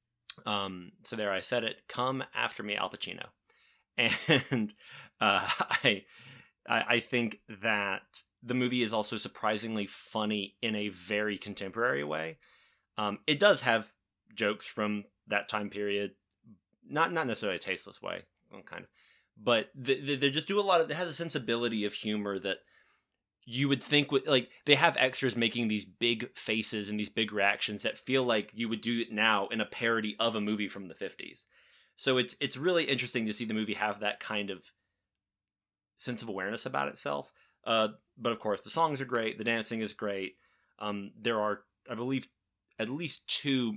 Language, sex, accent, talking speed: English, male, American, 175 wpm